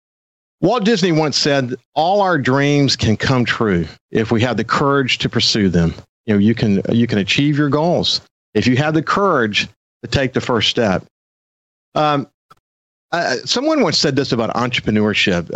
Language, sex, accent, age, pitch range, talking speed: English, male, American, 50-69, 115-150 Hz, 175 wpm